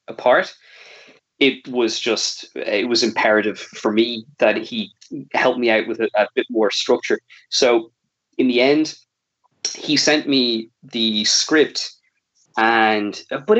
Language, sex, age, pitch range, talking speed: English, male, 20-39, 110-140 Hz, 135 wpm